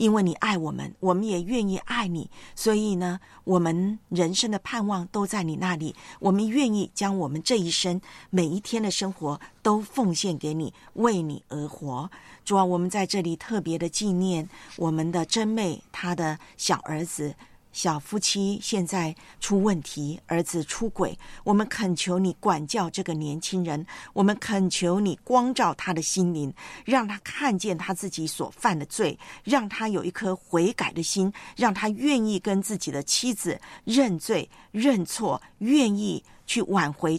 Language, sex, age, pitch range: Chinese, female, 50-69, 170-205 Hz